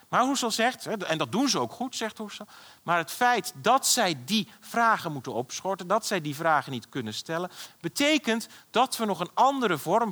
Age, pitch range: 40-59, 130-215 Hz